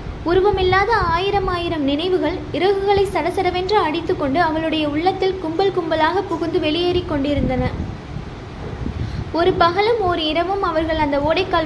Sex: female